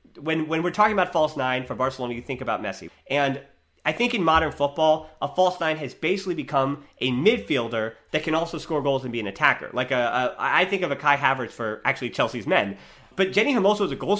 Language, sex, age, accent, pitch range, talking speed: English, male, 30-49, American, 135-170 Hz, 235 wpm